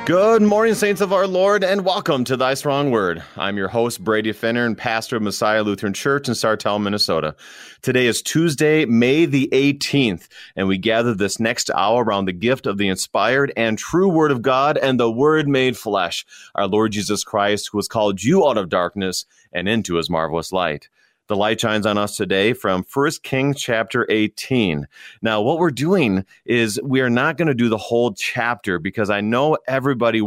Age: 30-49